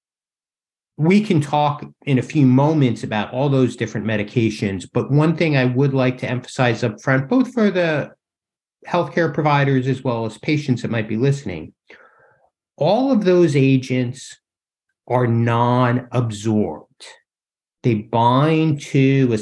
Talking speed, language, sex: 140 wpm, English, male